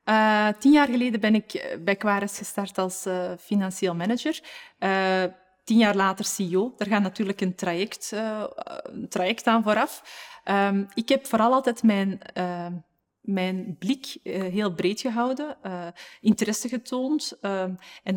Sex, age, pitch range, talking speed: female, 20-39, 190-240 Hz, 150 wpm